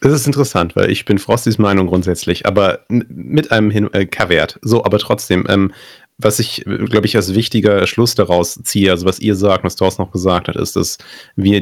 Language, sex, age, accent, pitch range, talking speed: German, male, 30-49, German, 90-105 Hz, 205 wpm